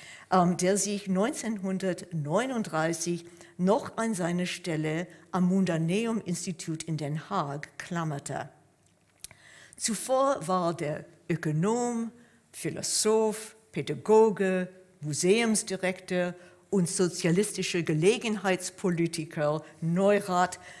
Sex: female